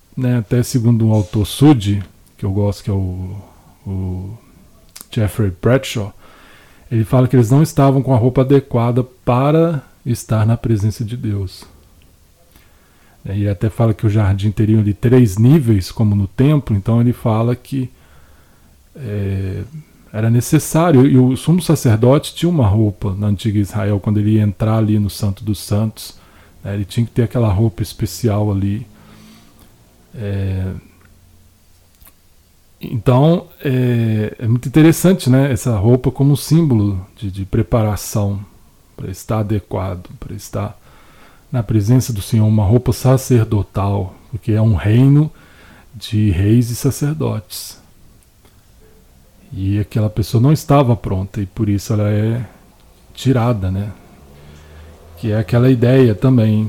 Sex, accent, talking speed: male, Brazilian, 135 wpm